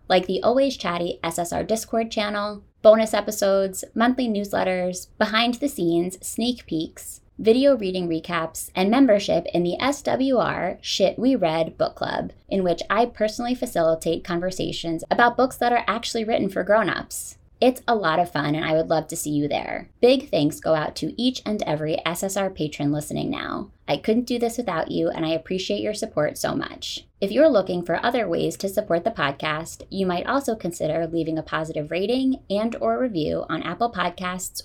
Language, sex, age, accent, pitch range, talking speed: English, female, 20-39, American, 165-230 Hz, 180 wpm